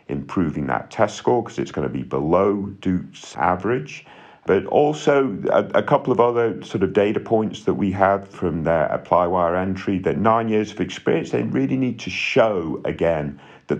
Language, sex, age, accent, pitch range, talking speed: English, male, 50-69, British, 75-105 Hz, 185 wpm